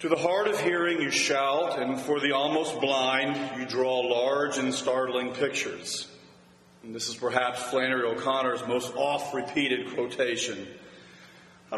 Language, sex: English, male